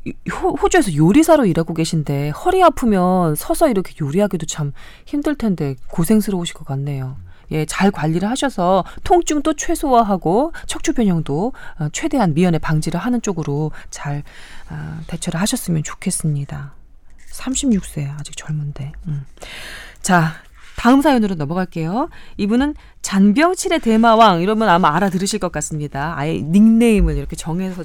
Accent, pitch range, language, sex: native, 160-260 Hz, Korean, female